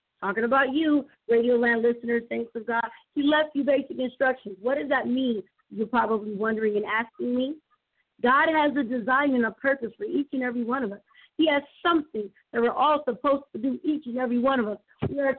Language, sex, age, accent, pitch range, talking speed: English, female, 40-59, American, 235-285 Hz, 215 wpm